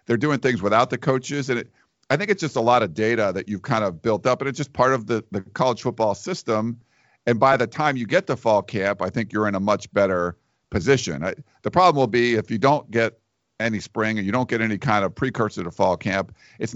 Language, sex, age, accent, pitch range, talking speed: English, male, 50-69, American, 100-130 Hz, 260 wpm